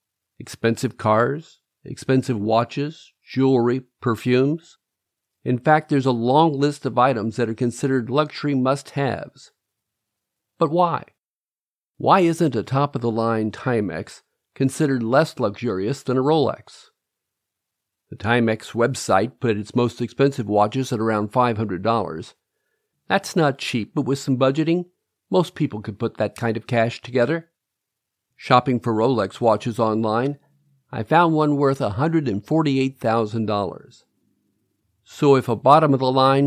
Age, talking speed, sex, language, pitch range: 50-69, 120 wpm, male, English, 115-140 Hz